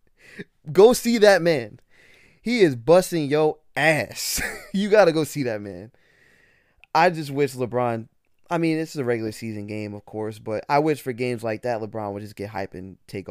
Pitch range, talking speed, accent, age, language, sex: 105-140 Hz, 200 wpm, American, 20-39, English, male